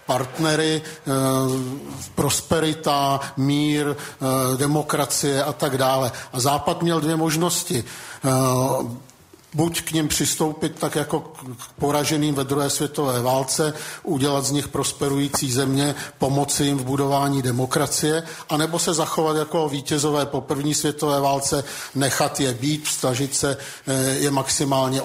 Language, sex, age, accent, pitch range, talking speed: Czech, male, 50-69, native, 135-150 Hz, 120 wpm